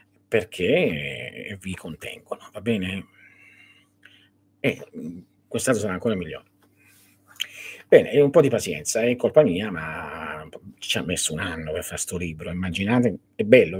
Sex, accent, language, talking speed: male, native, Italian, 135 wpm